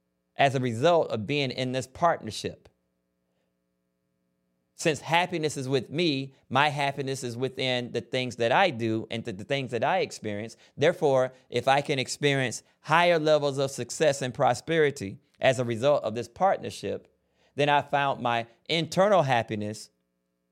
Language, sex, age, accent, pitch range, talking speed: English, male, 30-49, American, 105-140 Hz, 150 wpm